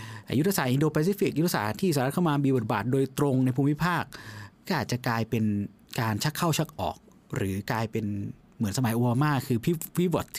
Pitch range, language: 110-145 Hz, Thai